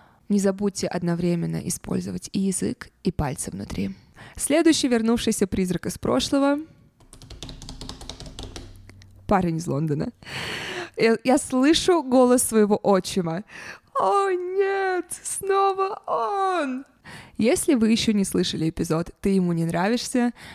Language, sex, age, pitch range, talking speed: Russian, female, 20-39, 180-250 Hz, 105 wpm